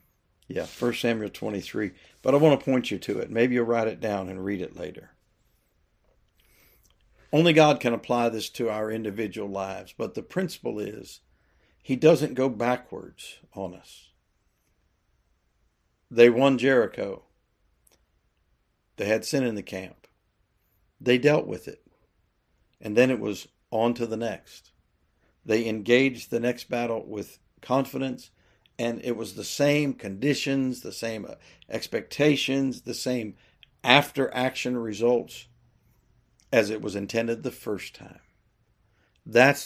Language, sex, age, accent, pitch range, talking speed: English, male, 60-79, American, 100-130 Hz, 135 wpm